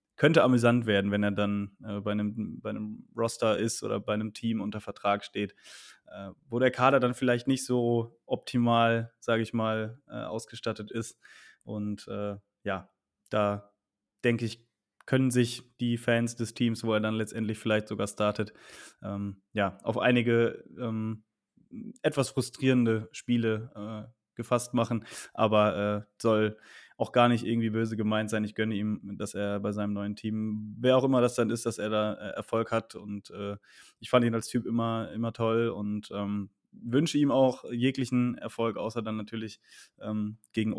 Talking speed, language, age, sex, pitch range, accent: 170 wpm, German, 20-39, male, 105-115 Hz, German